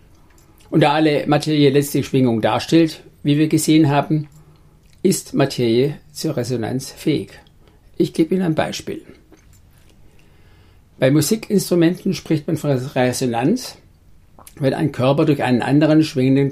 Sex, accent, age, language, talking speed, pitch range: male, German, 60-79, German, 125 wpm, 120-155 Hz